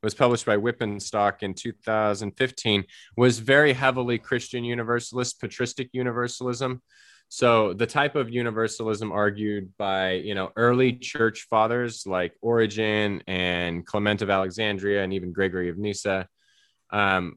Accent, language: American, English